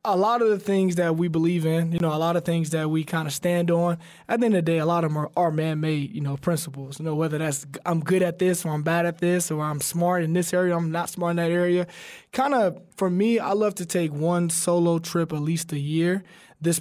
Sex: male